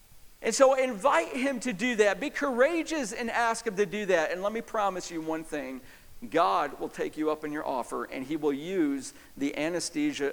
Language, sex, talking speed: English, male, 210 wpm